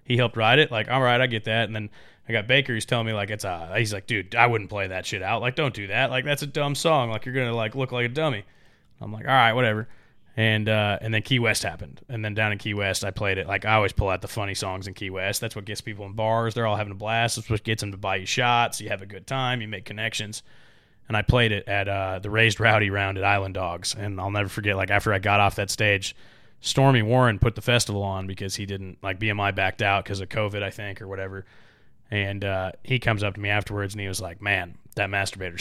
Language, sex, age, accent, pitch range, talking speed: English, male, 20-39, American, 100-115 Hz, 280 wpm